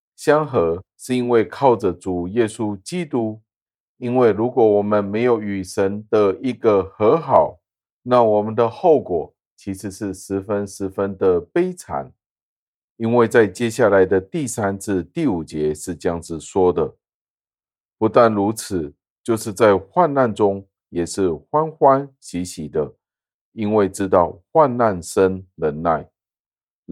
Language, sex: Chinese, male